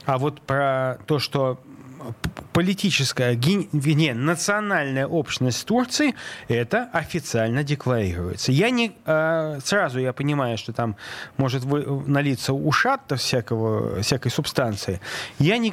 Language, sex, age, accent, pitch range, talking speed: Russian, male, 30-49, native, 120-165 Hz, 105 wpm